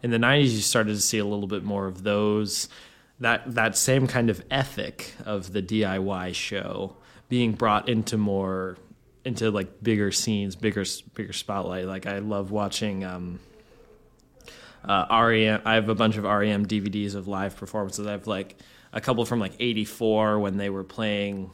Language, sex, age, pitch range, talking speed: English, male, 20-39, 95-110 Hz, 175 wpm